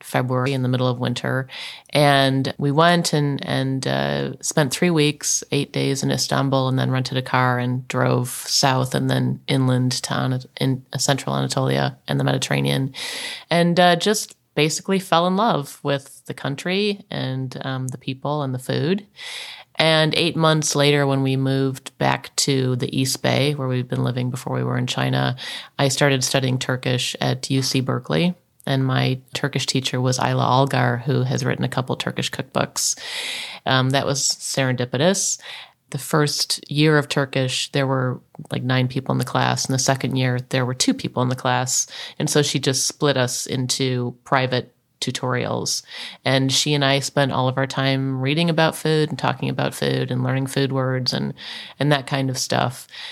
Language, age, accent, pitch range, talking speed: English, 30-49, American, 125-145 Hz, 180 wpm